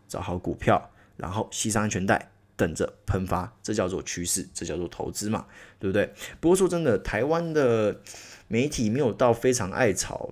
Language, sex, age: Chinese, male, 20-39